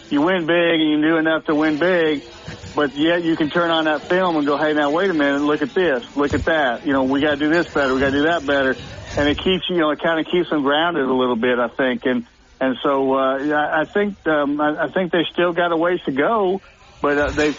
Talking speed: 280 wpm